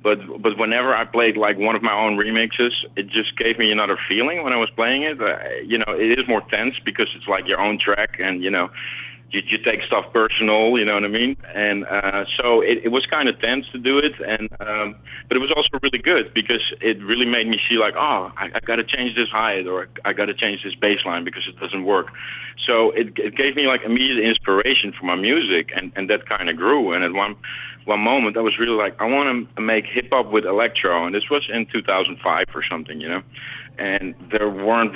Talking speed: 240 wpm